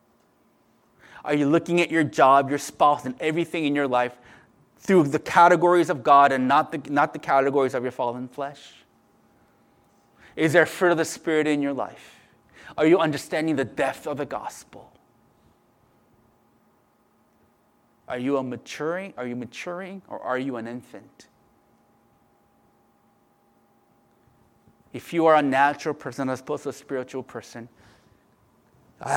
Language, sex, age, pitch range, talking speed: English, male, 30-49, 125-150 Hz, 145 wpm